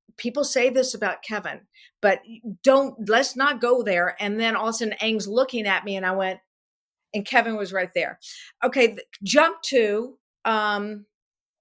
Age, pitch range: 50-69, 205-245 Hz